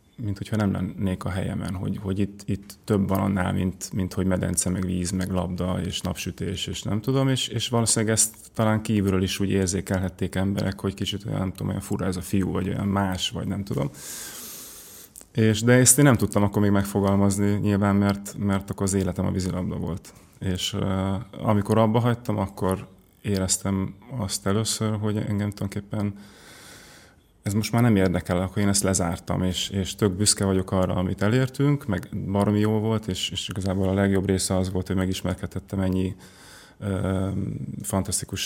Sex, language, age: male, Hungarian, 30-49